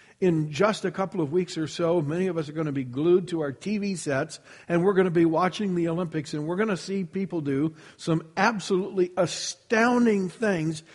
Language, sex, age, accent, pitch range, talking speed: English, male, 60-79, American, 145-195 Hz, 215 wpm